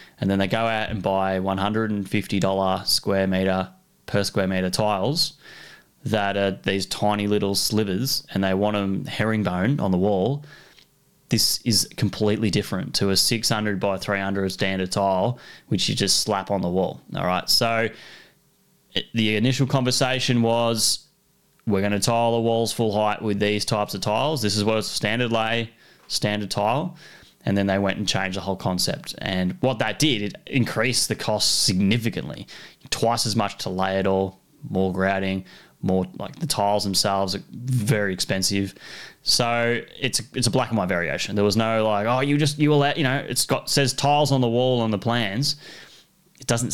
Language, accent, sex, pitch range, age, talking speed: English, Australian, male, 100-125 Hz, 10-29, 175 wpm